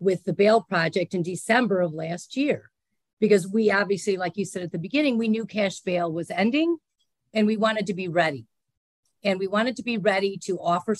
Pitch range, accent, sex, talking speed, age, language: 170-225 Hz, American, female, 205 wpm, 50-69, English